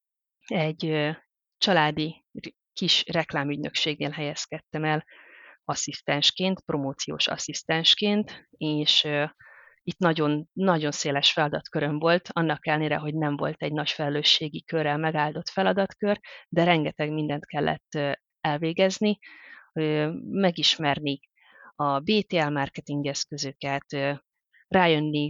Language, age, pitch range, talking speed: Hungarian, 30-49, 145-165 Hz, 90 wpm